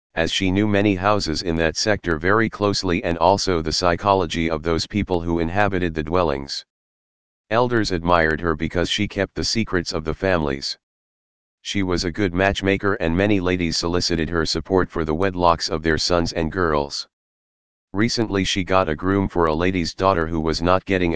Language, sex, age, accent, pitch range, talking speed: English, male, 40-59, American, 80-95 Hz, 180 wpm